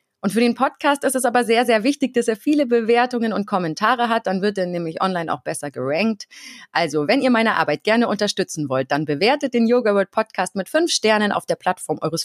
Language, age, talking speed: German, 30-49, 225 wpm